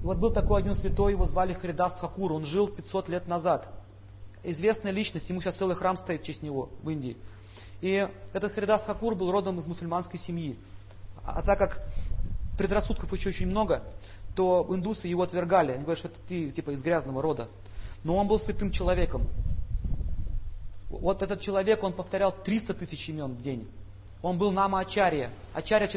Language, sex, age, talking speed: Russian, male, 40-59, 175 wpm